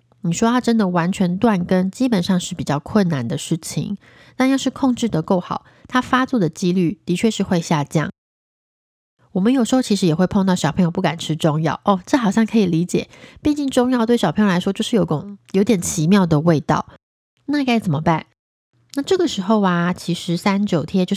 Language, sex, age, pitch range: Chinese, female, 20-39, 170-215 Hz